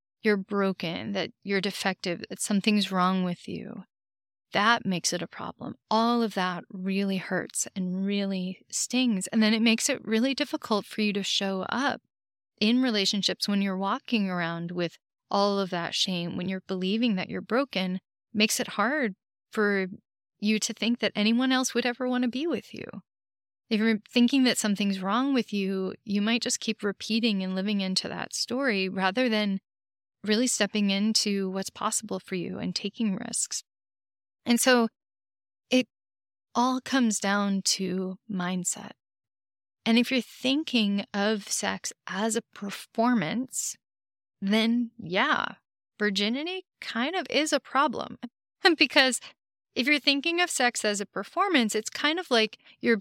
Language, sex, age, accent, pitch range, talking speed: English, female, 30-49, American, 190-240 Hz, 155 wpm